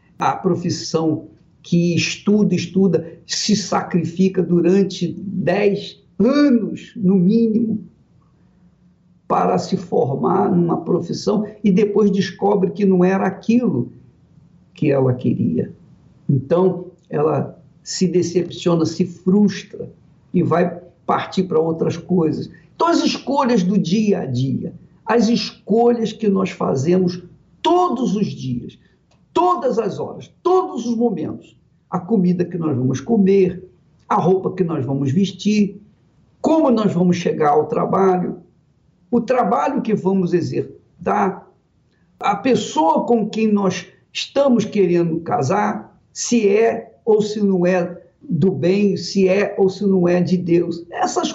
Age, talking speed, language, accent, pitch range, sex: 60-79, 125 wpm, Portuguese, Brazilian, 170-210 Hz, male